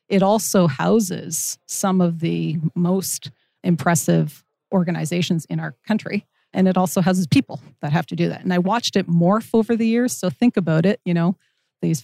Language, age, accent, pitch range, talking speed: English, 40-59, American, 160-190 Hz, 185 wpm